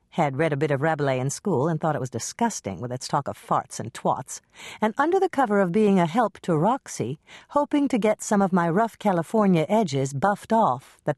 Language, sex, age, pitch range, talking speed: English, female, 50-69, 155-225 Hz, 225 wpm